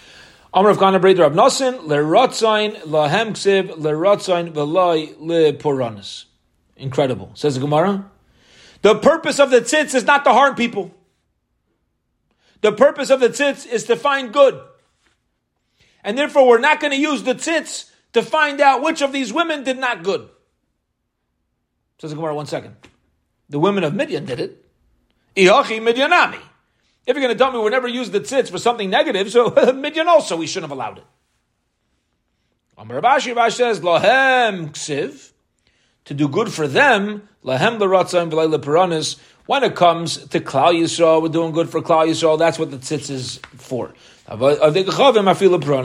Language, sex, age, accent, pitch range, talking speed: English, male, 40-59, American, 150-245 Hz, 135 wpm